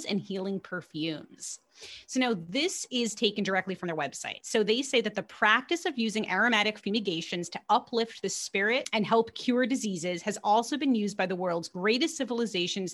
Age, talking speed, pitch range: 30-49, 180 wpm, 185-235 Hz